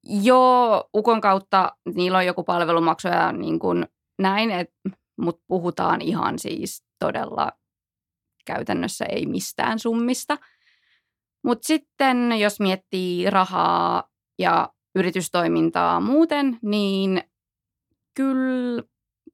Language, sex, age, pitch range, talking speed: Finnish, female, 20-39, 175-220 Hz, 95 wpm